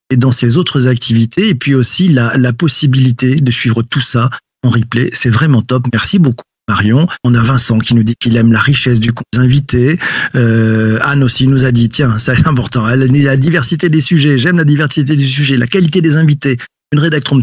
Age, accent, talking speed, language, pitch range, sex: 40-59, French, 215 wpm, French, 120-150 Hz, male